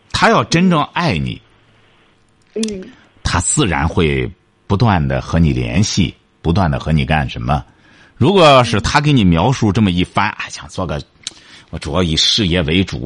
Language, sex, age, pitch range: Chinese, male, 50-69, 85-125 Hz